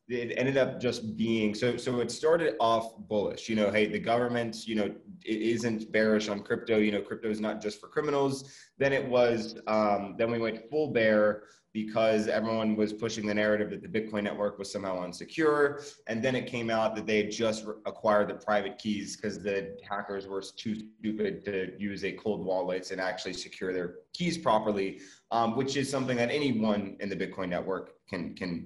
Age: 20-39